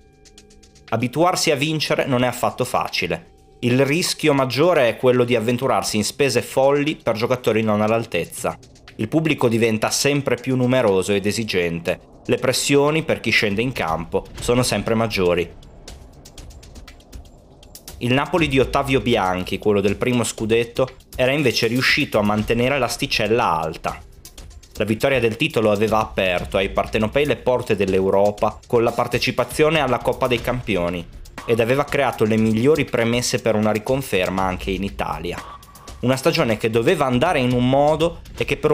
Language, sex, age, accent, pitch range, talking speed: Italian, male, 30-49, native, 105-135 Hz, 150 wpm